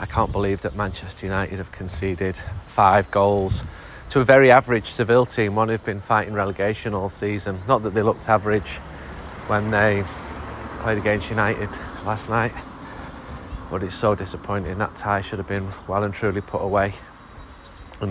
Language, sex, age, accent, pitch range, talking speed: English, male, 30-49, British, 95-115 Hz, 165 wpm